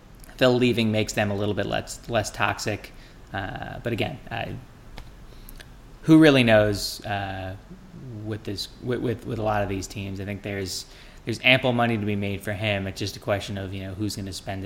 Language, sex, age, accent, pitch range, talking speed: English, male, 20-39, American, 100-120 Hz, 205 wpm